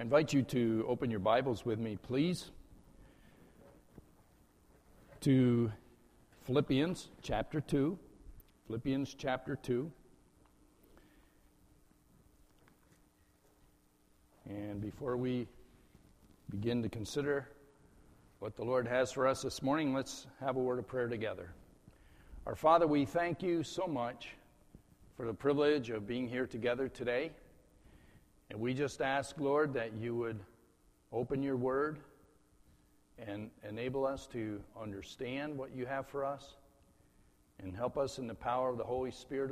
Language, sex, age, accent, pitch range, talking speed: English, male, 50-69, American, 110-135 Hz, 130 wpm